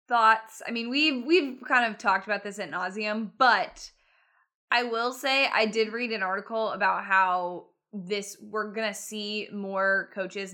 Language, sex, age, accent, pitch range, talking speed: English, female, 10-29, American, 190-225 Hz, 165 wpm